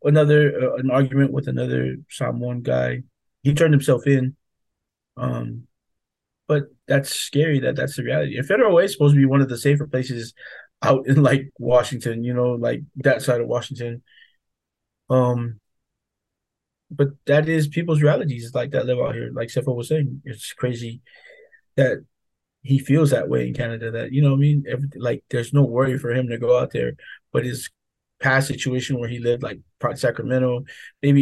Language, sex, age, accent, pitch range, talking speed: English, male, 20-39, American, 120-145 Hz, 180 wpm